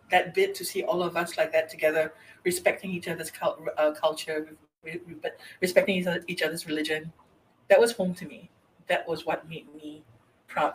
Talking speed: 200 wpm